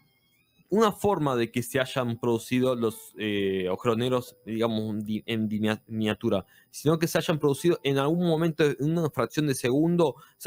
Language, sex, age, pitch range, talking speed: Spanish, male, 20-39, 115-160 Hz, 160 wpm